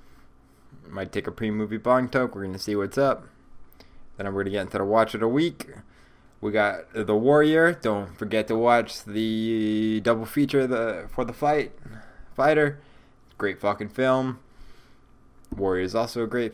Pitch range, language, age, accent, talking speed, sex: 100-125 Hz, English, 20-39, American, 175 wpm, male